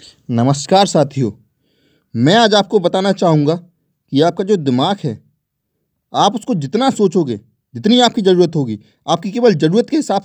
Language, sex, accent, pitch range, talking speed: Hindi, male, native, 150-210 Hz, 145 wpm